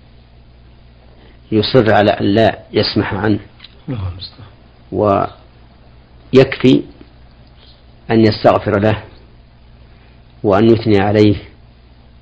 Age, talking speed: 50-69, 65 wpm